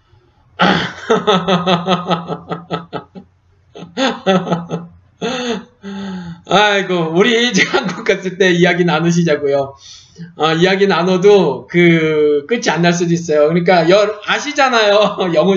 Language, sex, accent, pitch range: Korean, male, native, 165-215 Hz